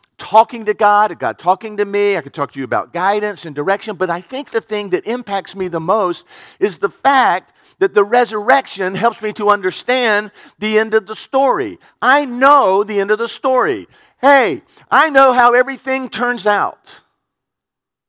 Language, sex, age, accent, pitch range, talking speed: English, male, 50-69, American, 180-240 Hz, 185 wpm